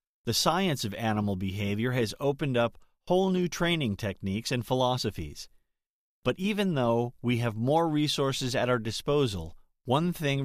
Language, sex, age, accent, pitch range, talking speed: English, male, 40-59, American, 105-145 Hz, 150 wpm